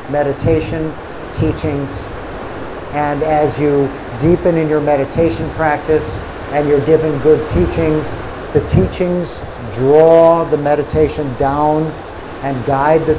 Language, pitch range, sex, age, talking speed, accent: English, 140-160 Hz, male, 50-69, 110 wpm, American